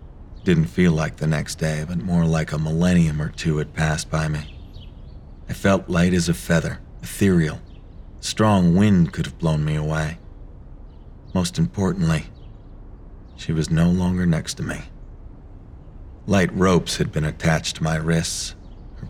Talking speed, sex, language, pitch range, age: 155 wpm, male, English, 80-90 Hz, 40-59